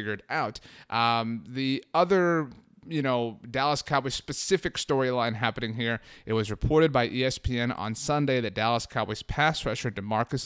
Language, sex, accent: English, male, American